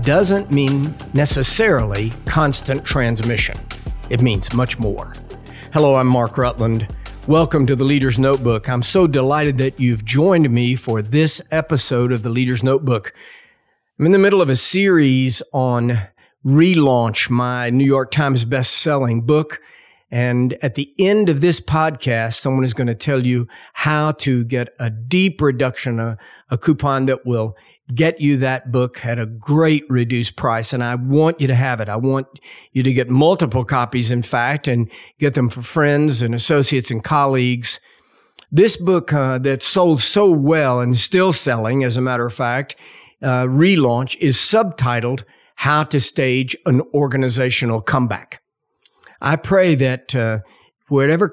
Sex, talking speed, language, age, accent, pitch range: male, 160 wpm, English, 50-69, American, 120-150 Hz